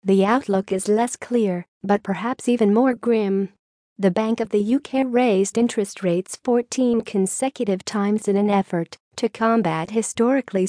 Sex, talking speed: female, 150 wpm